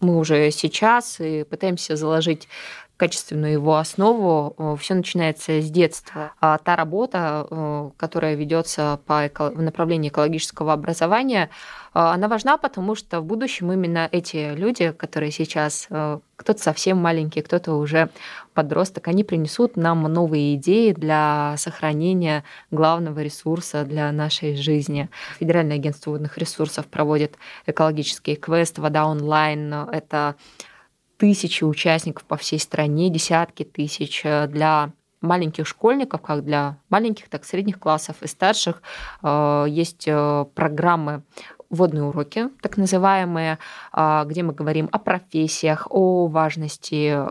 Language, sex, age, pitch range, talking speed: Russian, female, 20-39, 150-175 Hz, 120 wpm